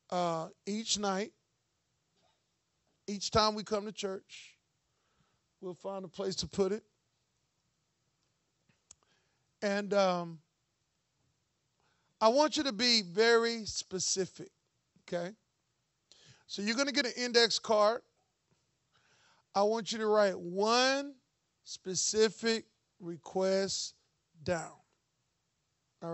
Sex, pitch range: male, 175-215 Hz